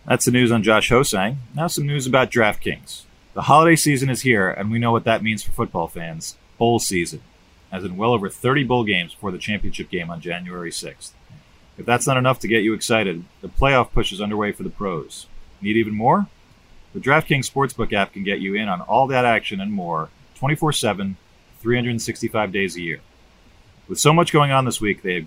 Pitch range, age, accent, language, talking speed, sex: 100-130 Hz, 40-59, American, English, 205 wpm, male